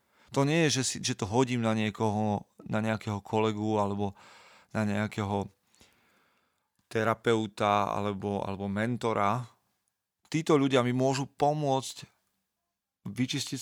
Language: Slovak